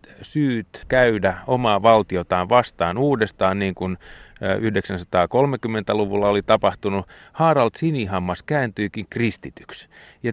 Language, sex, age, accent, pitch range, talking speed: Finnish, male, 30-49, native, 95-125 Hz, 95 wpm